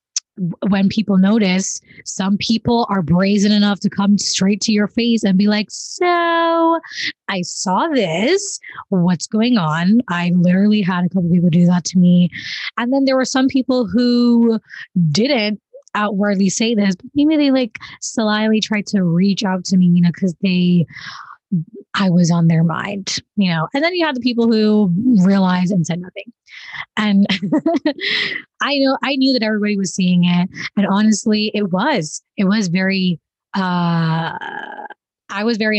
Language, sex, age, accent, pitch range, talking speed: English, female, 20-39, American, 185-240 Hz, 165 wpm